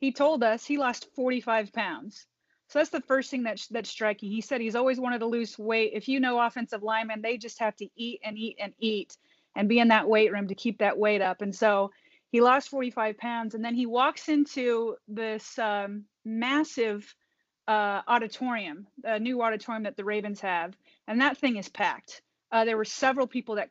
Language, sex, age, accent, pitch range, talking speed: English, female, 30-49, American, 215-250 Hz, 205 wpm